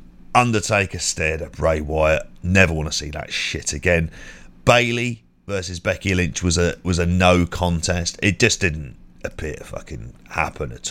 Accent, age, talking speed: British, 40-59, 165 wpm